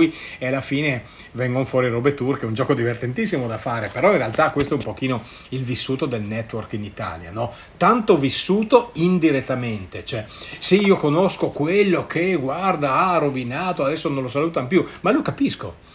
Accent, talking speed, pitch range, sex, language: native, 175 wpm, 120-180 Hz, male, Italian